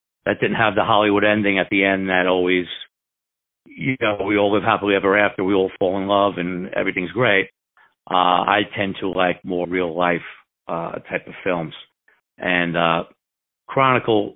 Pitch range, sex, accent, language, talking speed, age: 90-105 Hz, male, American, English, 175 wpm, 50-69